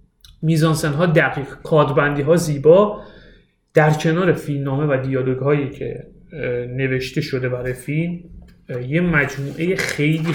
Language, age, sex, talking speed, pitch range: Persian, 30-49, male, 110 wpm, 135-175 Hz